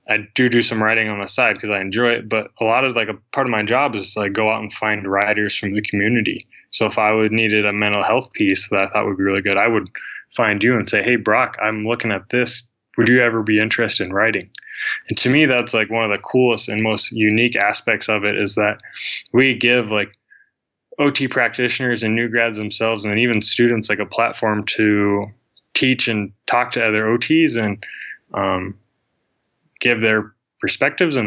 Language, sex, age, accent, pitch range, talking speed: English, male, 20-39, American, 105-120 Hz, 215 wpm